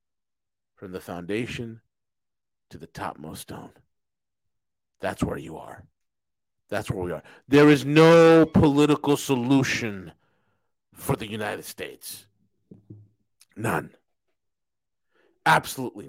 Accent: American